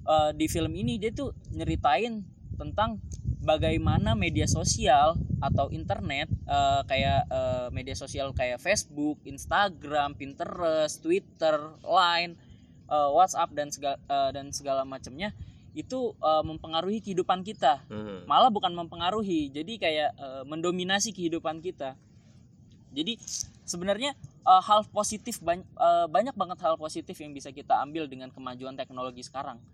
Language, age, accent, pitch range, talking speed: Indonesian, 20-39, native, 130-180 Hz, 130 wpm